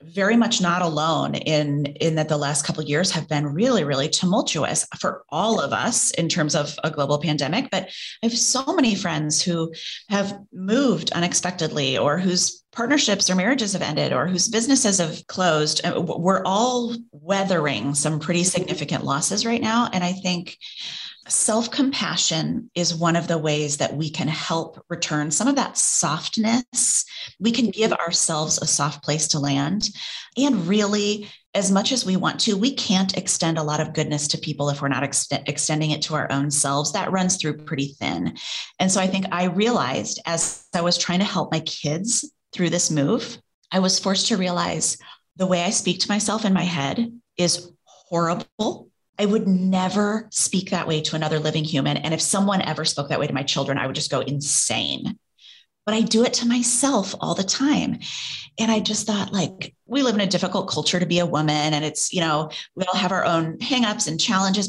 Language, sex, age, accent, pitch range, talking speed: English, female, 30-49, American, 155-205 Hz, 195 wpm